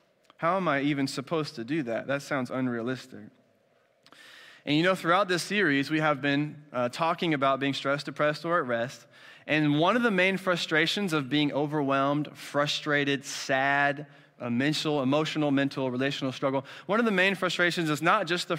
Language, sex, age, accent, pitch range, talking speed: English, male, 20-39, American, 135-165 Hz, 175 wpm